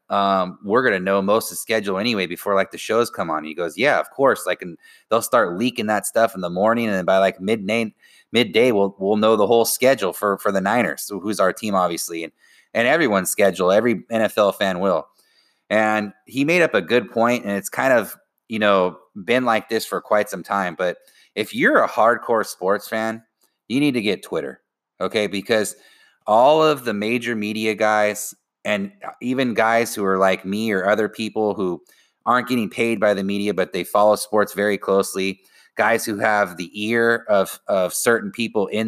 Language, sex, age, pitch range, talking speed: English, male, 30-49, 100-115 Hz, 205 wpm